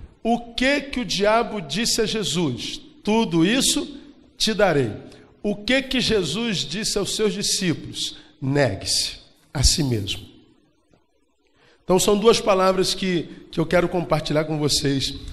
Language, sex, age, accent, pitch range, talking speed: Portuguese, male, 50-69, Brazilian, 145-210 Hz, 135 wpm